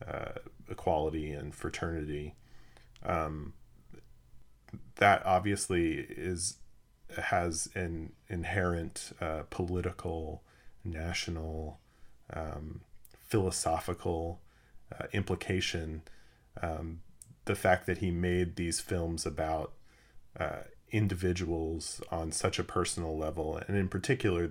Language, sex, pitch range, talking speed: English, male, 80-100 Hz, 90 wpm